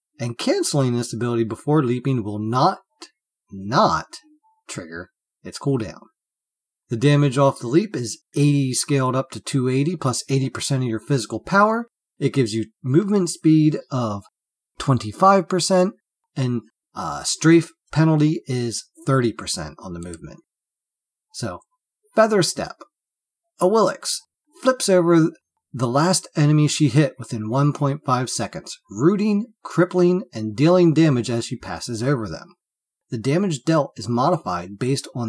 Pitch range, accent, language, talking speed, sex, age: 120-170 Hz, American, English, 130 wpm, male, 40-59